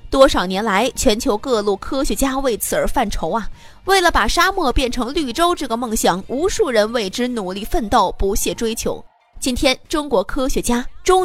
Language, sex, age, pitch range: Chinese, female, 20-39, 215-320 Hz